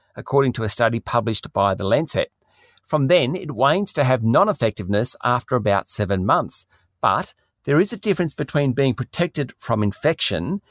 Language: English